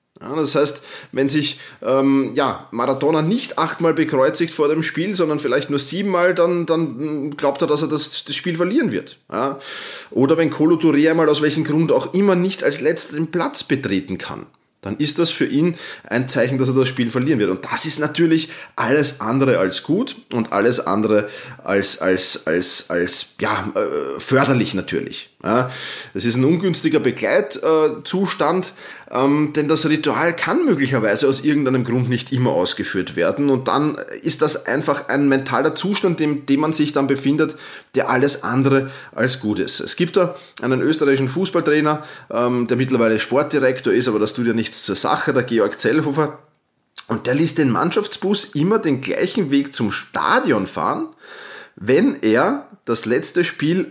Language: German